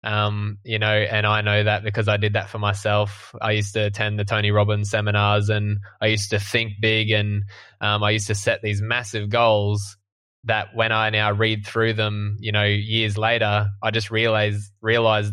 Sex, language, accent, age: male, English, Australian, 20-39